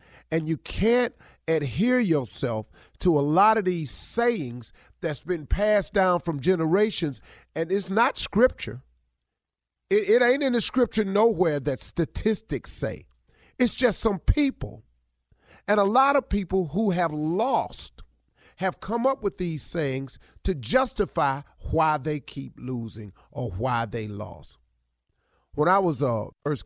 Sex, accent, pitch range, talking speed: male, American, 100-160 Hz, 145 wpm